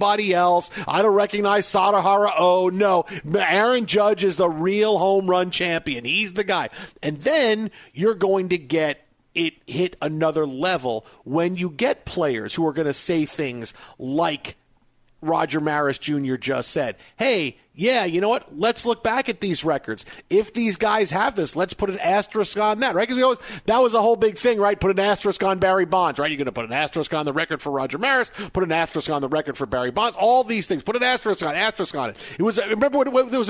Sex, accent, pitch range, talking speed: male, American, 160-210 Hz, 215 wpm